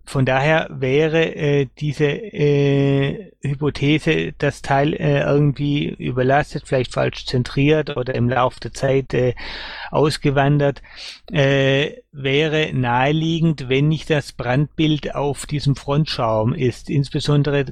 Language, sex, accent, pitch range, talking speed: German, male, German, 130-150 Hz, 115 wpm